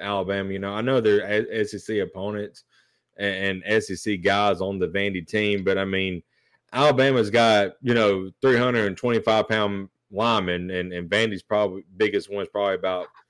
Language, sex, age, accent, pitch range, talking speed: English, male, 20-39, American, 100-115 Hz, 165 wpm